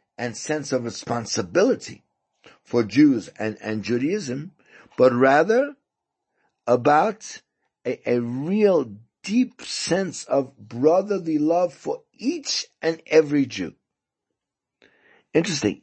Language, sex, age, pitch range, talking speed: English, male, 60-79, 125-200 Hz, 100 wpm